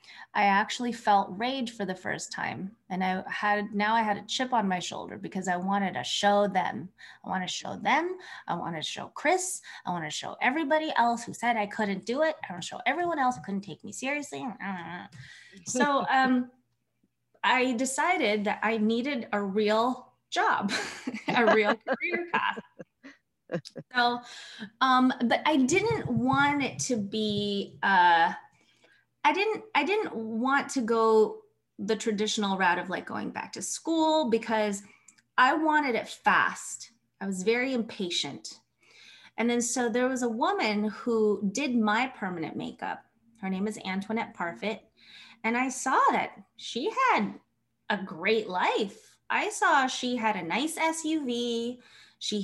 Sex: female